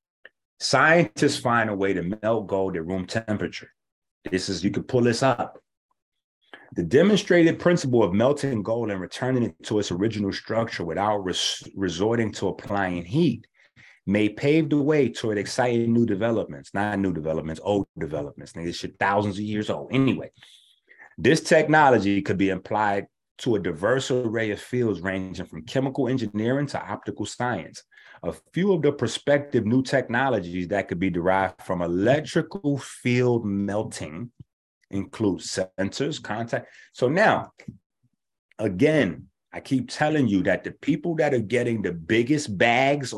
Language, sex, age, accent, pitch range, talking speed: English, male, 30-49, American, 100-135 Hz, 150 wpm